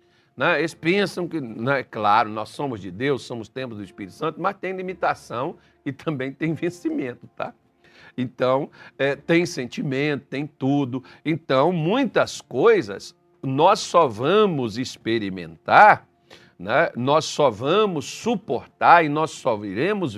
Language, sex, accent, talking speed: Portuguese, male, Brazilian, 130 wpm